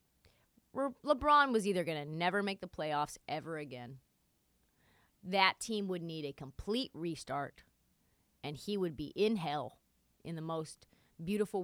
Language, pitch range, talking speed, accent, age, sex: English, 150-220 Hz, 145 wpm, American, 30-49, female